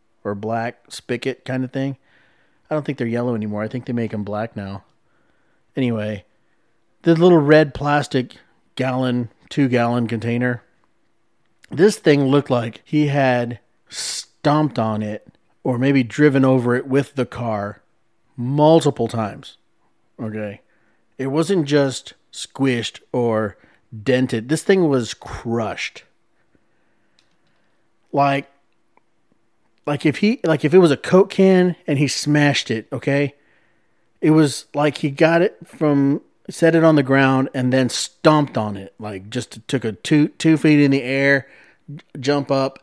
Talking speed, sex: 145 wpm, male